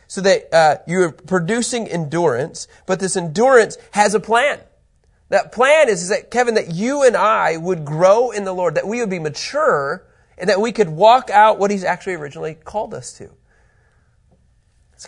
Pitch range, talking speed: 125-200 Hz, 185 wpm